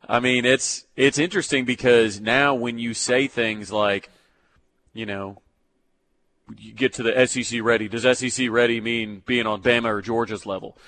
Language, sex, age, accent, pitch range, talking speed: English, male, 30-49, American, 115-135 Hz, 165 wpm